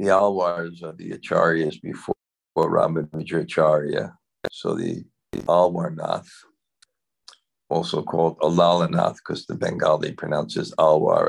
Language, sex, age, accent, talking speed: English, male, 60-79, American, 105 wpm